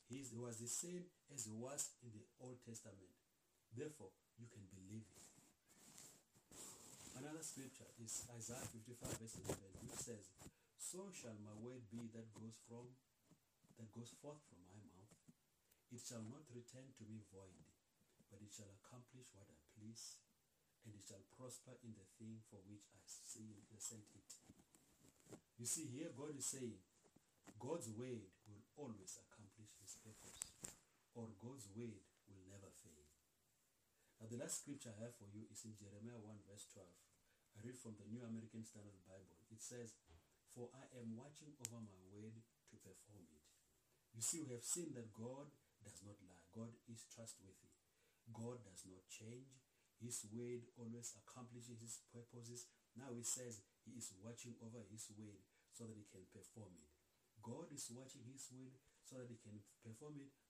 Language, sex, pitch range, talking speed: English, male, 105-120 Hz, 165 wpm